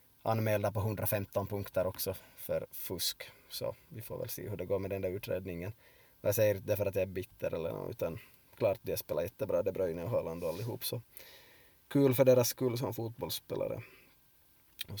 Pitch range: 105-120 Hz